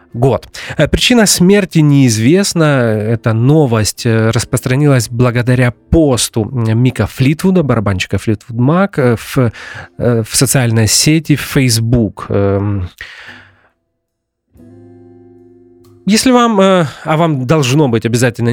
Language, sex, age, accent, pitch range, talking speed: Russian, male, 30-49, native, 115-150 Hz, 85 wpm